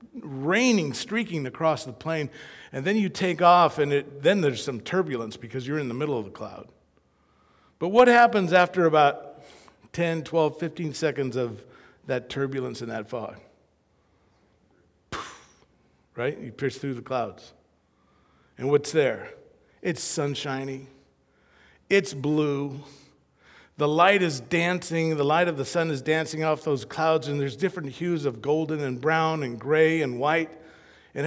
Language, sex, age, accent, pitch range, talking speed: English, male, 50-69, American, 140-185 Hz, 155 wpm